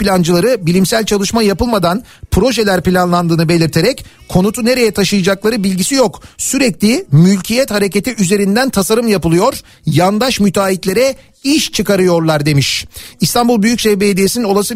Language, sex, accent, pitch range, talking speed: Turkish, male, native, 175-225 Hz, 105 wpm